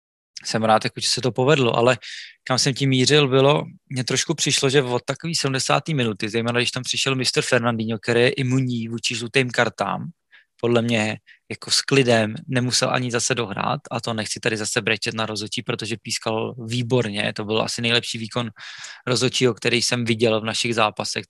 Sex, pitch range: male, 115-130 Hz